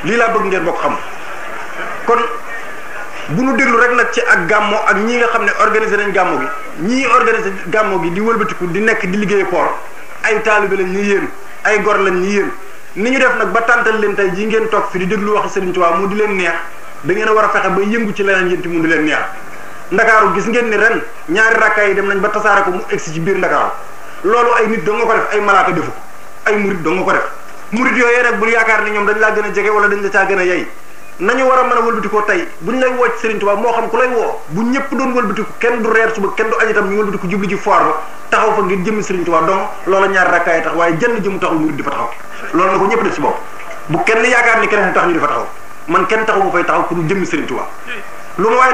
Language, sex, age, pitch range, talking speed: French, male, 30-49, 195-225 Hz, 115 wpm